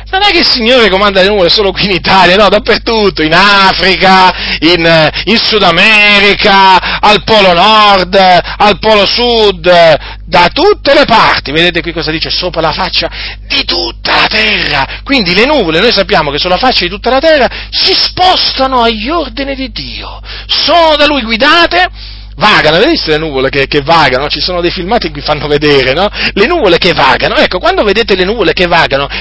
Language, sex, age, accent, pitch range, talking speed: Italian, male, 40-59, native, 130-210 Hz, 185 wpm